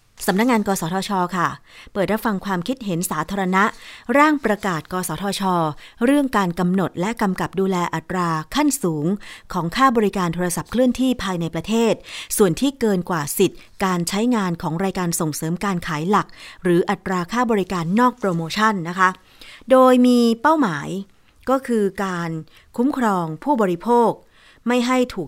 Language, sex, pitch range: Thai, female, 175-225 Hz